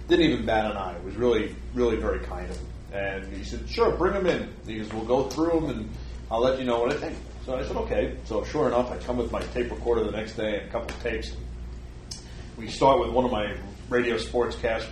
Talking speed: 260 wpm